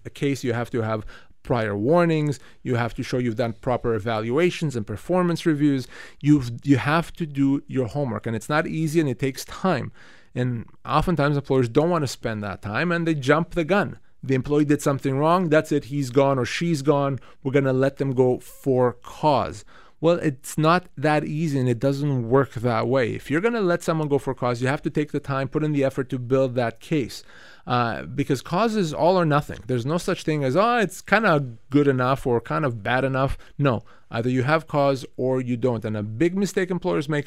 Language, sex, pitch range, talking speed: English, male, 130-170 Hz, 220 wpm